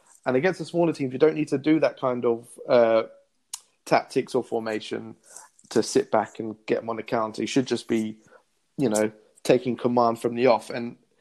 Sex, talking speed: male, 205 wpm